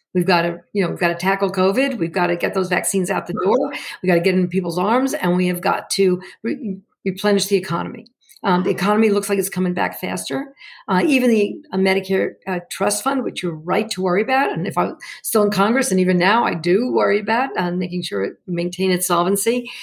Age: 50-69